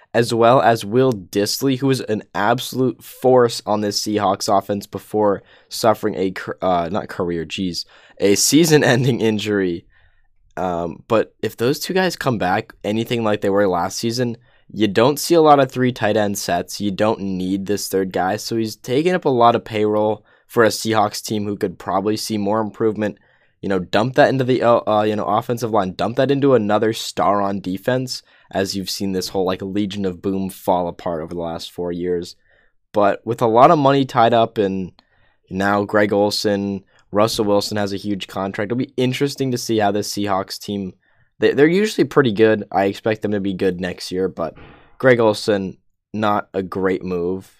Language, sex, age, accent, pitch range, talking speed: English, male, 10-29, American, 95-115 Hz, 195 wpm